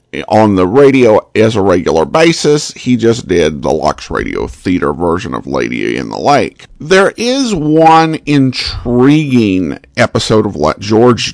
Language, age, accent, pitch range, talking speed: English, 50-69, American, 110-160 Hz, 150 wpm